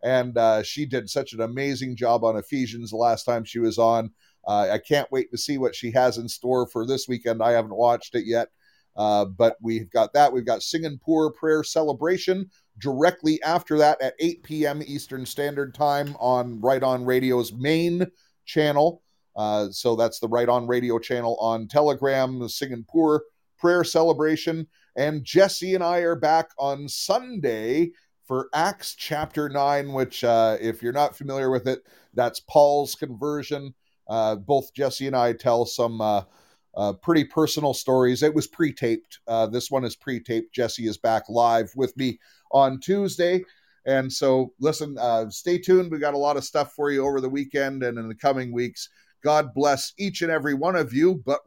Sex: male